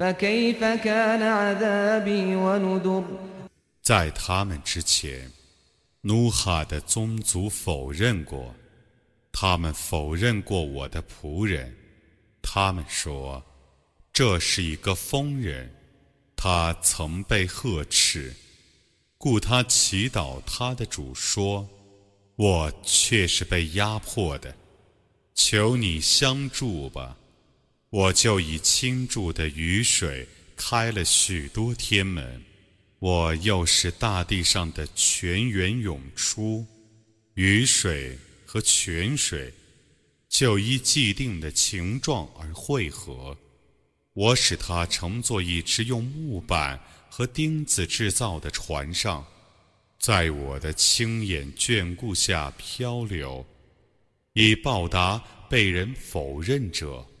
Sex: male